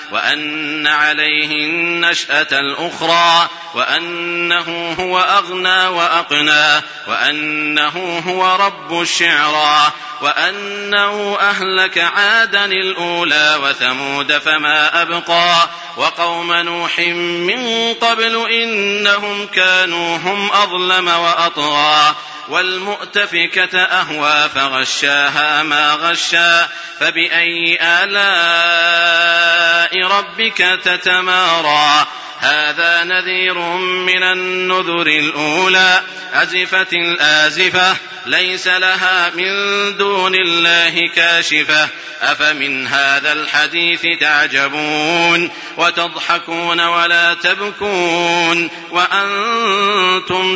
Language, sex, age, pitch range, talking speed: Arabic, male, 40-59, 150-185 Hz, 70 wpm